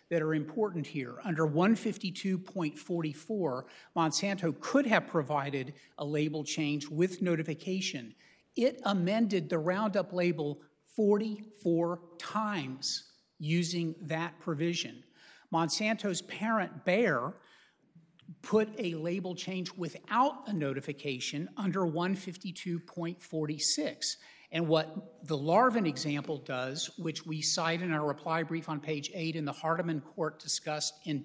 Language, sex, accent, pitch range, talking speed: English, male, American, 155-200 Hz, 115 wpm